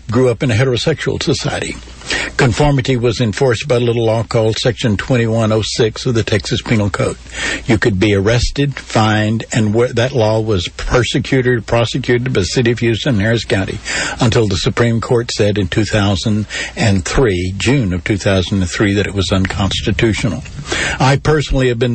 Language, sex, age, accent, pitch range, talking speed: English, male, 60-79, American, 105-125 Hz, 155 wpm